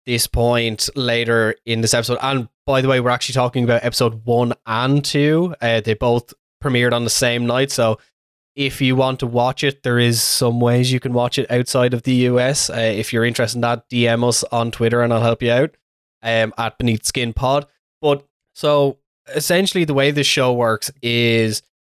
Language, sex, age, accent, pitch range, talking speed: English, male, 20-39, Irish, 115-130 Hz, 205 wpm